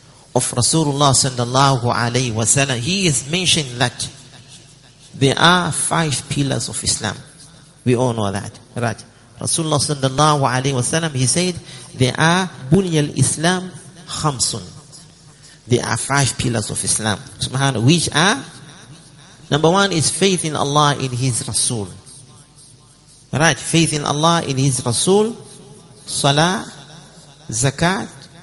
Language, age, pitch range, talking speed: English, 50-69, 125-160 Hz, 125 wpm